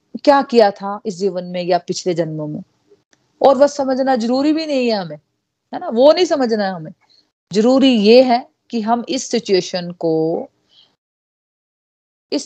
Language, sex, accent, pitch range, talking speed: Hindi, female, native, 195-250 Hz, 160 wpm